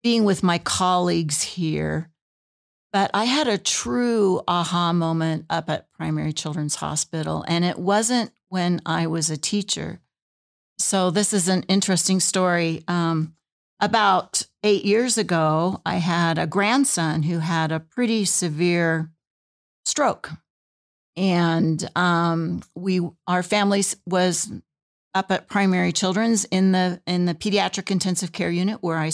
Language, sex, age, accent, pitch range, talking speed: English, female, 50-69, American, 165-200 Hz, 135 wpm